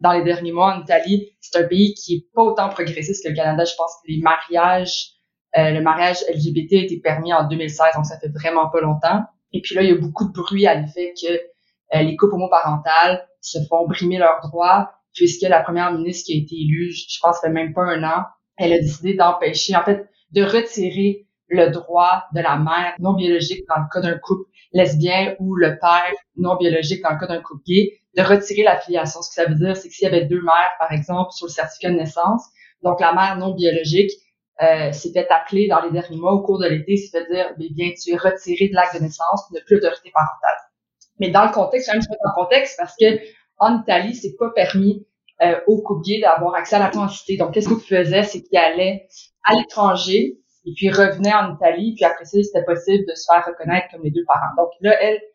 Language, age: French, 20-39